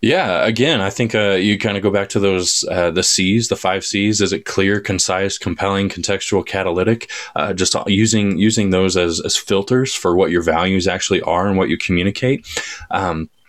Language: English